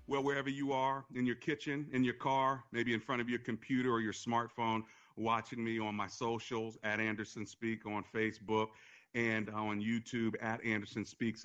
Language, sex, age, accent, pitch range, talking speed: English, male, 40-59, American, 105-140 Hz, 175 wpm